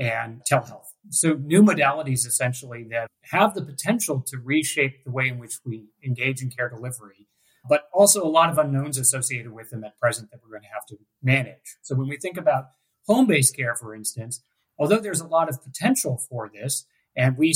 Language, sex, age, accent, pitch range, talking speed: English, male, 30-49, American, 125-160 Hz, 200 wpm